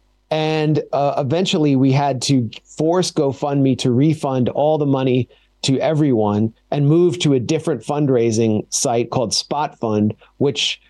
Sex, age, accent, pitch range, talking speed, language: male, 40-59, American, 125-150 Hz, 140 wpm, English